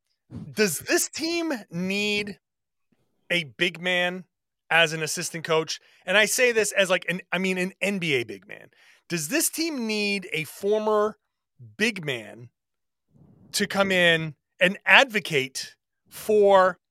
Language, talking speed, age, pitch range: English, 135 wpm, 30-49, 160-215 Hz